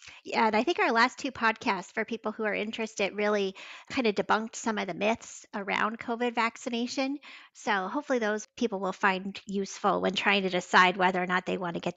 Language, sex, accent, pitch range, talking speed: English, female, American, 200-240 Hz, 210 wpm